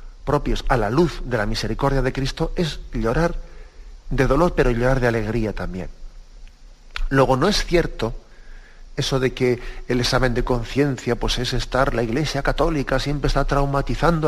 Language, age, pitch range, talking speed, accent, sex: Spanish, 40-59, 115-150 Hz, 160 wpm, Spanish, male